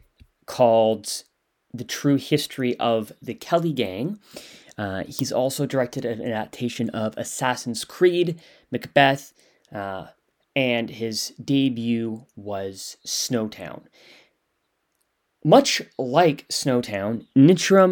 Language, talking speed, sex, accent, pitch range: English, 95 wpm, male, American, 120-150 Hz